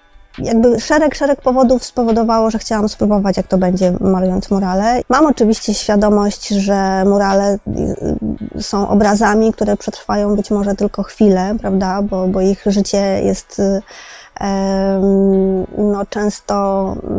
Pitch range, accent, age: 190-210 Hz, native, 20-39